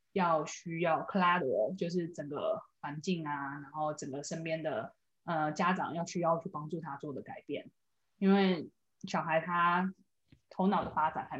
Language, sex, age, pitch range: Chinese, female, 20-39, 160-195 Hz